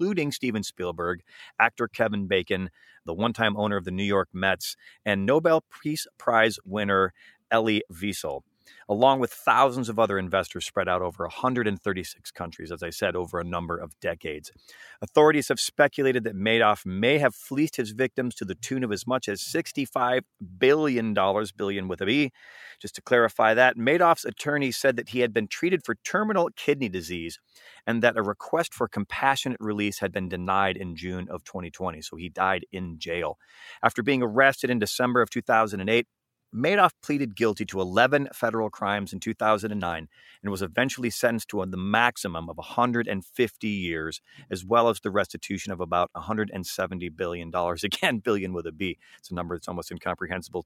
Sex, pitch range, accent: male, 95-125 Hz, American